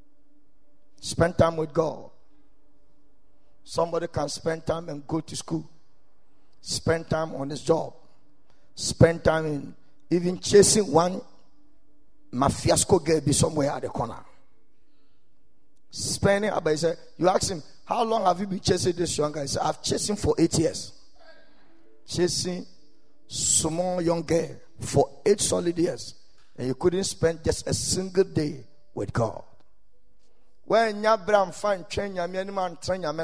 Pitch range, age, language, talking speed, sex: 145-195 Hz, 50-69, English, 145 wpm, male